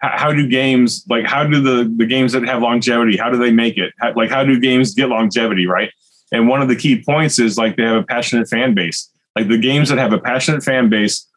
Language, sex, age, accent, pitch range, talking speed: English, male, 30-49, American, 110-130 Hz, 255 wpm